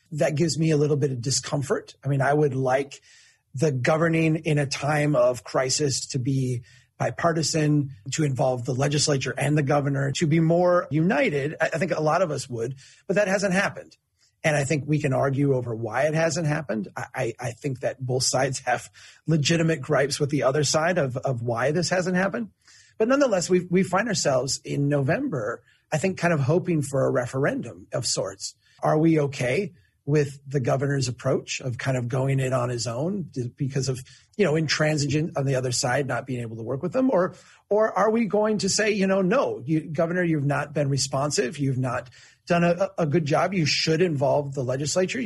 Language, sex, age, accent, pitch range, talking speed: English, male, 30-49, American, 130-170 Hz, 200 wpm